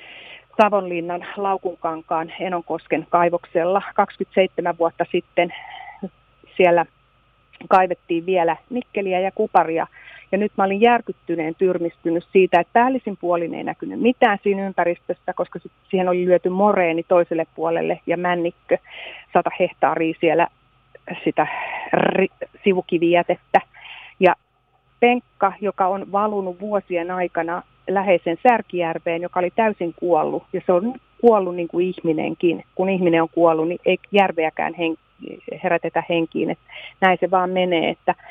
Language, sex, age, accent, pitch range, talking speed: Finnish, female, 30-49, native, 170-195 Hz, 120 wpm